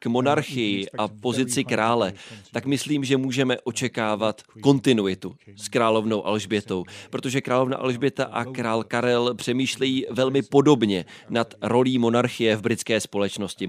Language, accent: Czech, native